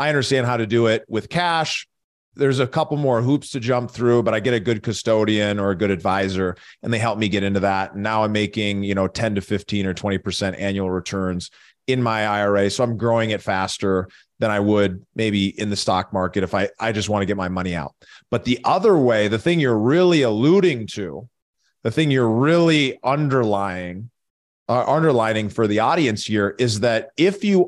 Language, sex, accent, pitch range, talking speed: English, male, American, 100-130 Hz, 205 wpm